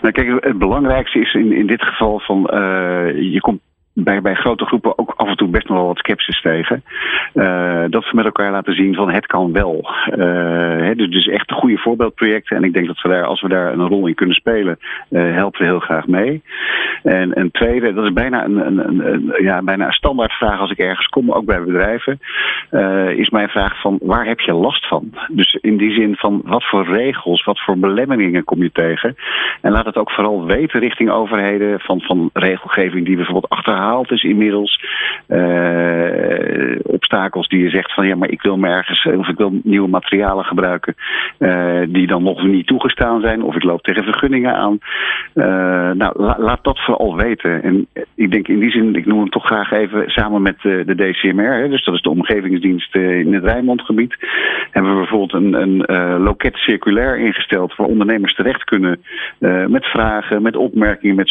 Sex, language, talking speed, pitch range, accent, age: male, Dutch, 205 wpm, 90-115 Hz, Dutch, 50-69